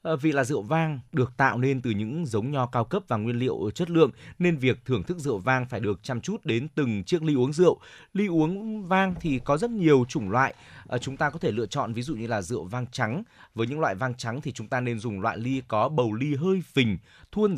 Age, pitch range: 20-39, 120-150 Hz